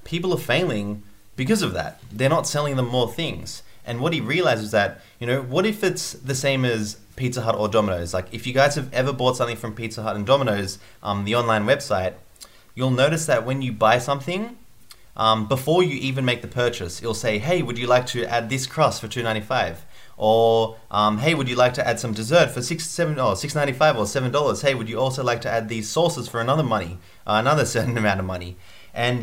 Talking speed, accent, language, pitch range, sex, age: 225 wpm, Australian, English, 105-130 Hz, male, 30-49